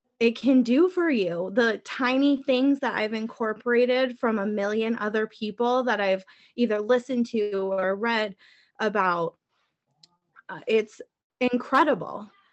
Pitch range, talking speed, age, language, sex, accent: 205-260 Hz, 130 wpm, 20-39, English, female, American